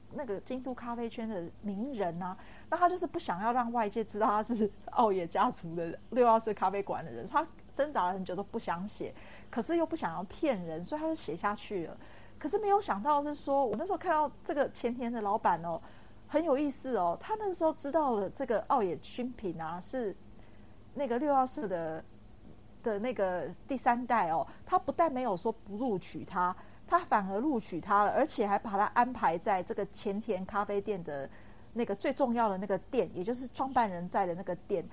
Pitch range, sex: 190-275 Hz, female